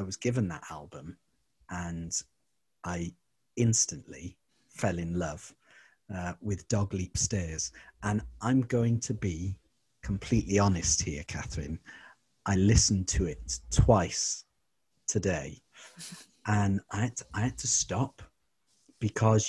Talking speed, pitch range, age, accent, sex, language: 115 wpm, 90-110 Hz, 40-59, British, male, English